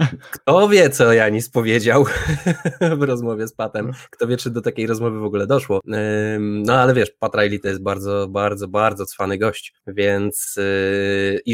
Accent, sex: native, male